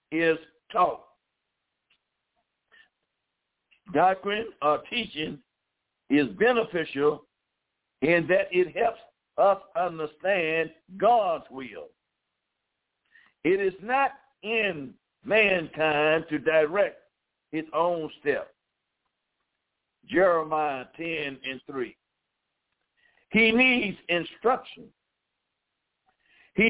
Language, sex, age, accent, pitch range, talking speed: English, male, 60-79, American, 155-220 Hz, 75 wpm